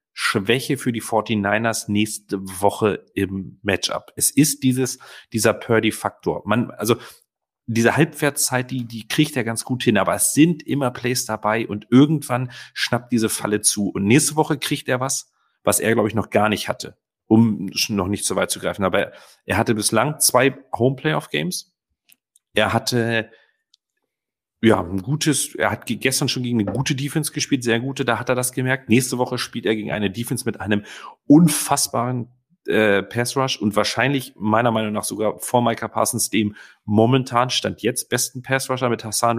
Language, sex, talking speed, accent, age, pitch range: German, male, 175 wpm, German, 40-59, 105-130 Hz